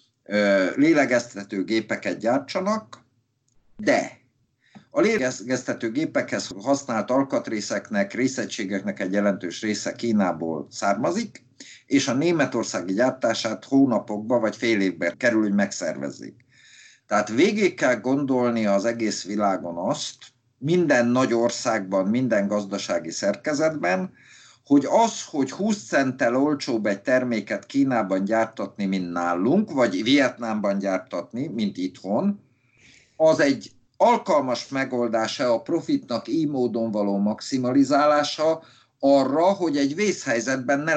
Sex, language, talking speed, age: male, Hungarian, 105 wpm, 50-69